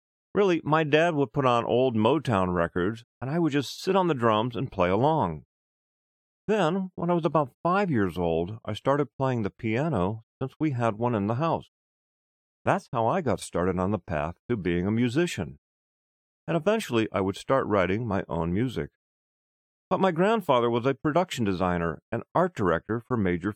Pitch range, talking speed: 90-145 Hz, 185 wpm